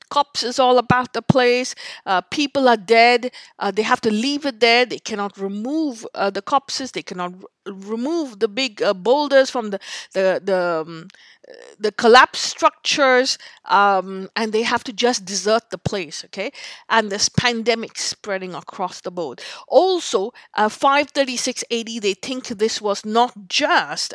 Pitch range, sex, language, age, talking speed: 200-255 Hz, female, English, 50-69, 165 wpm